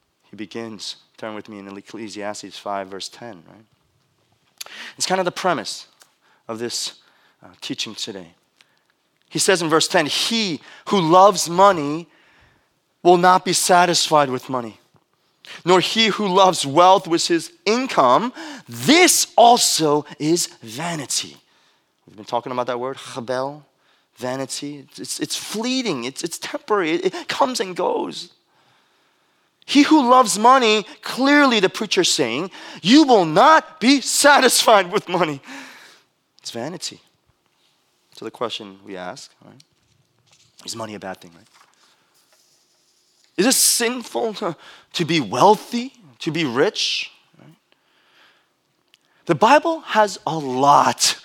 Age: 30-49